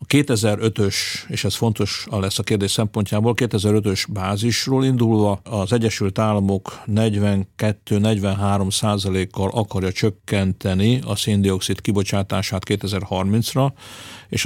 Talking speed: 95 wpm